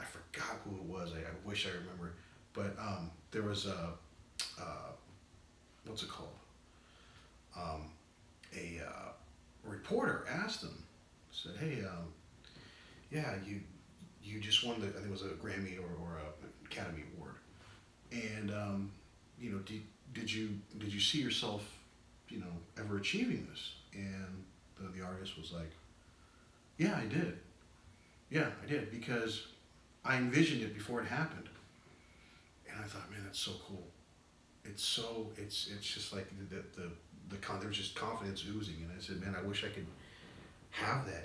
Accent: American